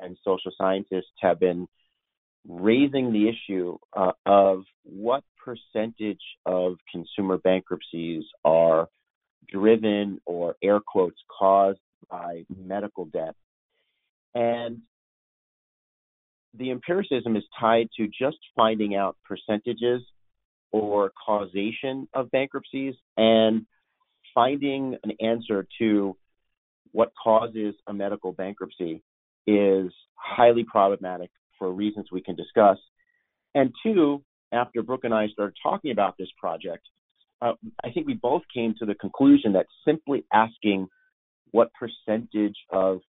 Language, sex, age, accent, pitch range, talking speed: English, male, 40-59, American, 95-115 Hz, 115 wpm